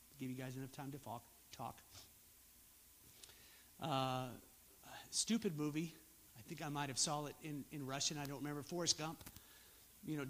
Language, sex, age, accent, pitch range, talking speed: English, male, 50-69, American, 135-170 Hz, 155 wpm